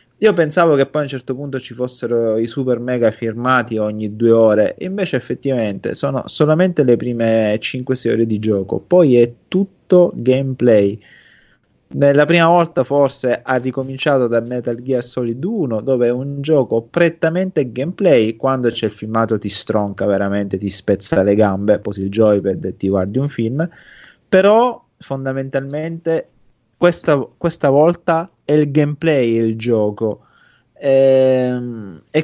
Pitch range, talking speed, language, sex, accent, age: 110-145 Hz, 145 wpm, Italian, male, native, 20-39